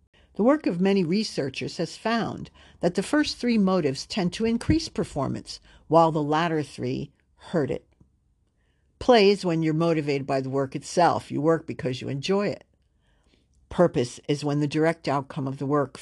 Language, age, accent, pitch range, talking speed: English, 60-79, American, 135-180 Hz, 170 wpm